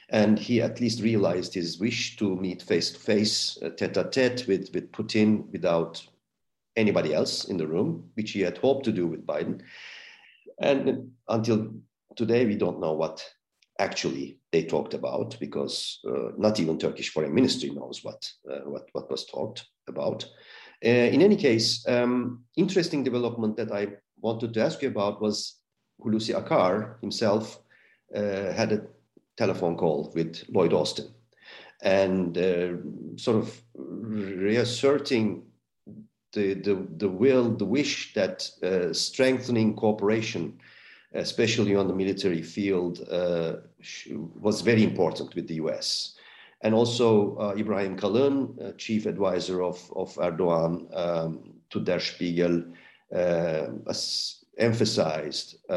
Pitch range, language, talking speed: 95-120 Hz, Turkish, 135 wpm